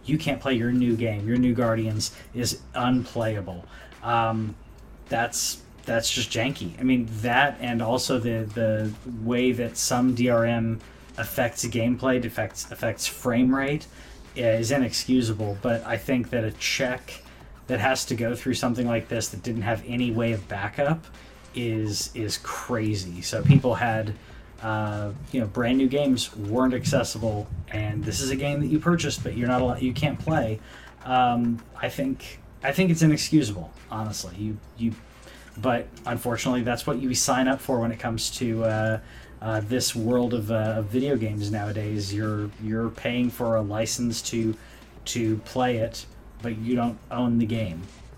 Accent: American